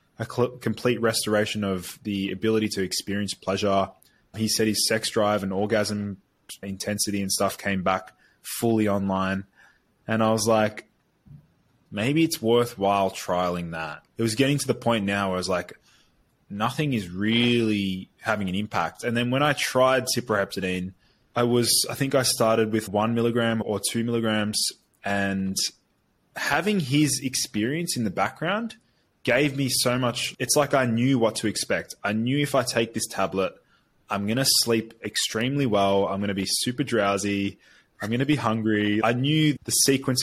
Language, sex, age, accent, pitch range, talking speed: English, male, 20-39, Australian, 100-125 Hz, 165 wpm